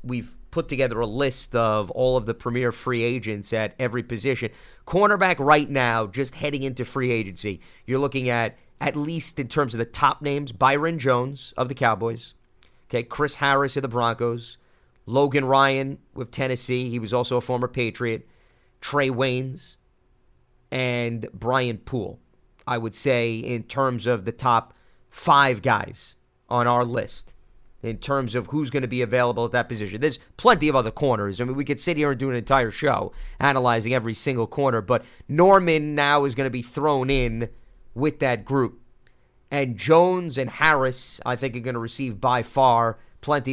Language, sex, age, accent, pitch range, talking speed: English, male, 30-49, American, 120-145 Hz, 180 wpm